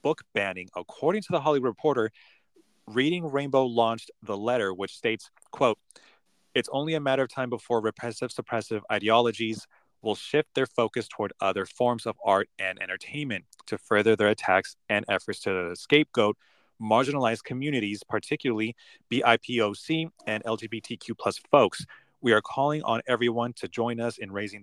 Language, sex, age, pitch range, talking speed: English, male, 30-49, 110-135 Hz, 150 wpm